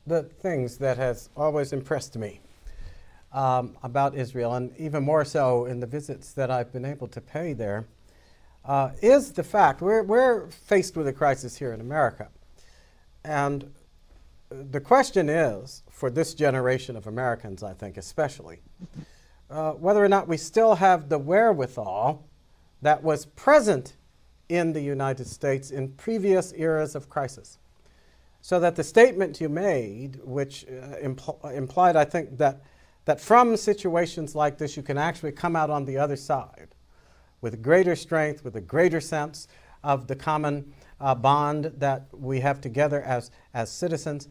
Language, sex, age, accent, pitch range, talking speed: English, male, 50-69, American, 130-165 Hz, 155 wpm